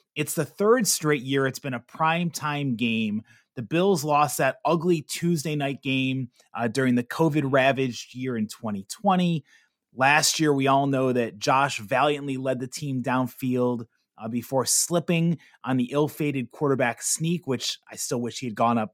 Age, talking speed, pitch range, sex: 30-49, 175 wpm, 125-170 Hz, male